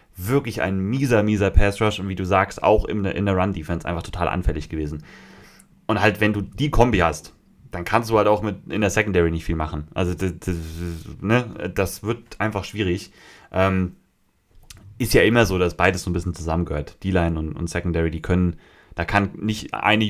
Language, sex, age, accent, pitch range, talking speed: German, male, 30-49, German, 90-110 Hz, 205 wpm